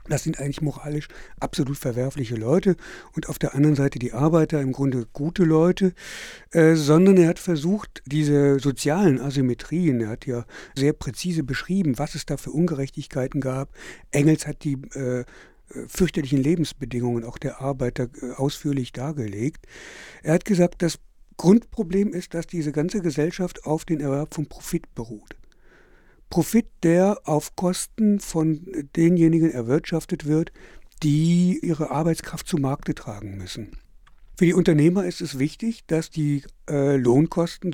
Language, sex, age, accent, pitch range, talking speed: German, male, 60-79, German, 140-170 Hz, 145 wpm